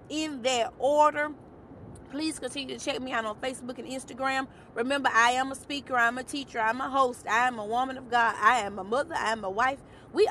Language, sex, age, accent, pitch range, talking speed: English, female, 30-49, American, 220-270 Hz, 240 wpm